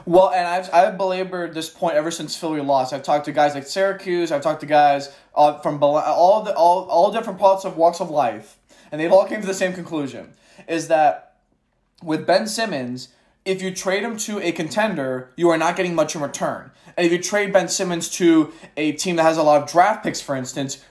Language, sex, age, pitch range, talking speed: English, male, 20-39, 150-200 Hz, 220 wpm